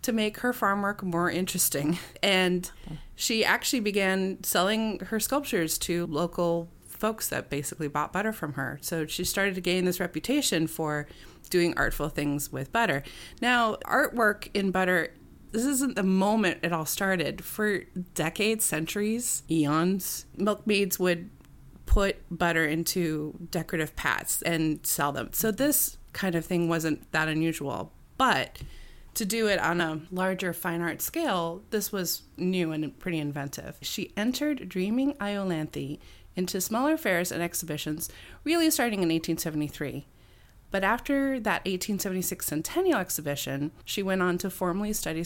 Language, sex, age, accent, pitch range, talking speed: English, female, 30-49, American, 160-215 Hz, 145 wpm